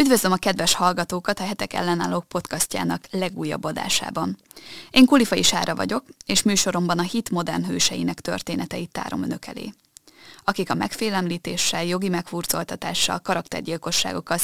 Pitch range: 175-205 Hz